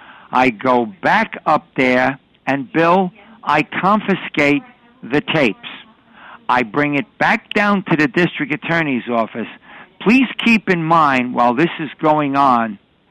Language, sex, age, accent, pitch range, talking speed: English, male, 60-79, American, 135-175 Hz, 135 wpm